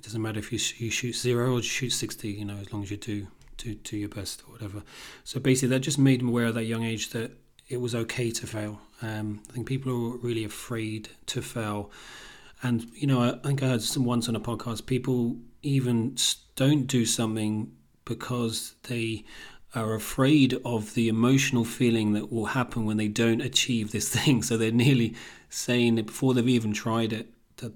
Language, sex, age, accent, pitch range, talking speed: English, male, 30-49, British, 110-120 Hz, 210 wpm